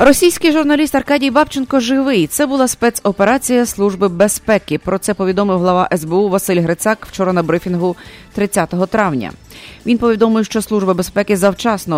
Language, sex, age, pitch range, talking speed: English, female, 30-49, 175-215 Hz, 140 wpm